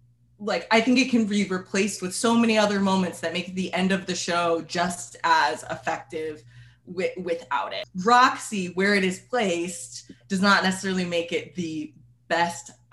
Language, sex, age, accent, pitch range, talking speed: English, female, 20-39, American, 160-195 Hz, 165 wpm